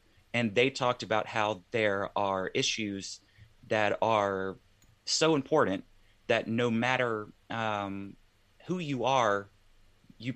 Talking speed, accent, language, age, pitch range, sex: 115 wpm, American, English, 30-49, 100-115 Hz, male